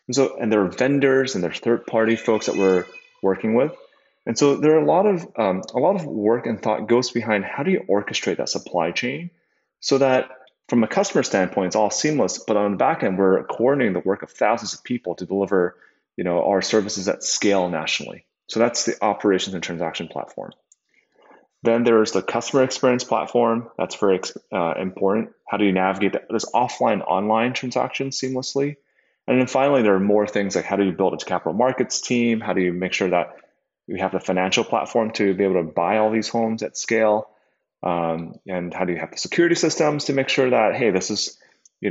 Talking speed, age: 215 wpm, 30-49